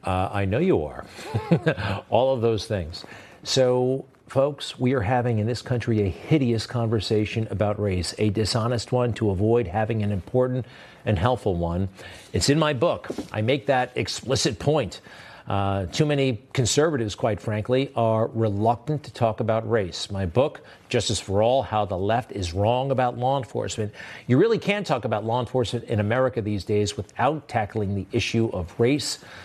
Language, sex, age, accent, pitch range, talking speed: English, male, 50-69, American, 105-135 Hz, 170 wpm